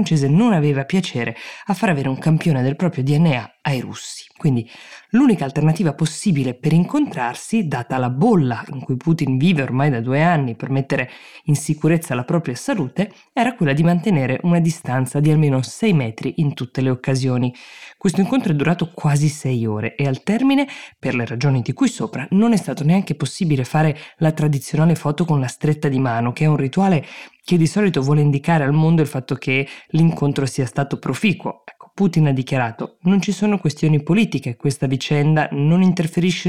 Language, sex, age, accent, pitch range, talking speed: Italian, female, 20-39, native, 130-170 Hz, 185 wpm